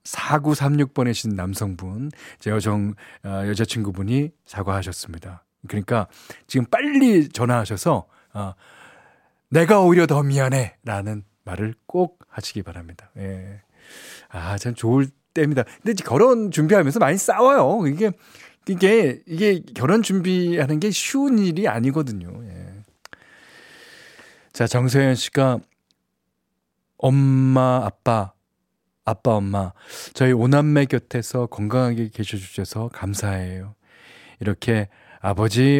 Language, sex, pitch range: Korean, male, 100-135 Hz